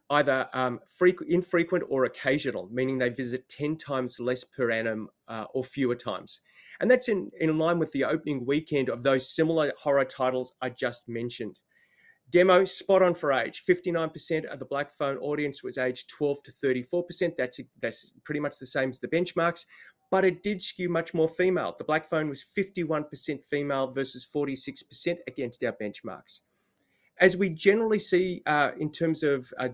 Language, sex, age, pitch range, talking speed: English, male, 30-49, 135-170 Hz, 175 wpm